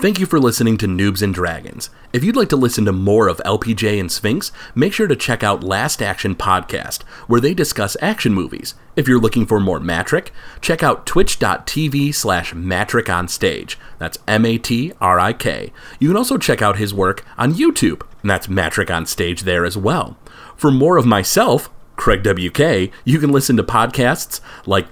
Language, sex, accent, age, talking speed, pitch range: English, male, American, 30-49, 195 wpm, 95-130 Hz